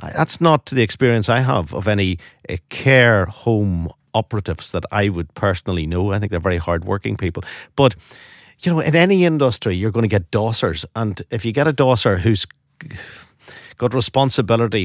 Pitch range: 100-130 Hz